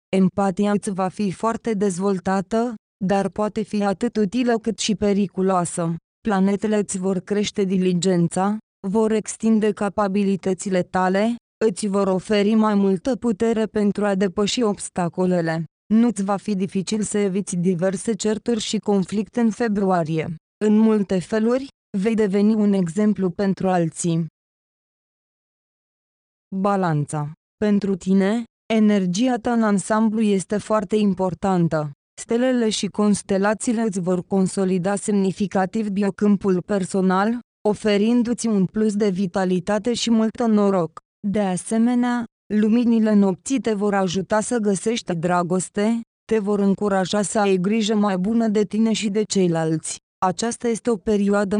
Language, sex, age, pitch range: Romanian, female, 20-39, 190-220 Hz